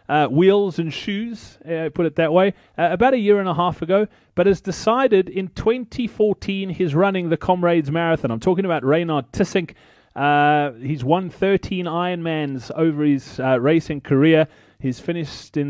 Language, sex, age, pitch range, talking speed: English, male, 30-49, 145-190 Hz, 170 wpm